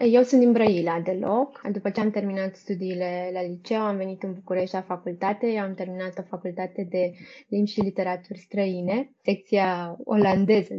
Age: 20-39